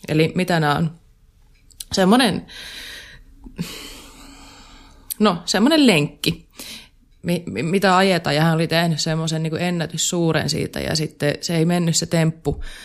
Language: Finnish